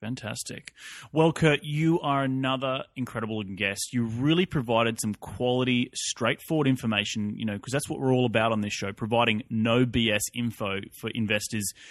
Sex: male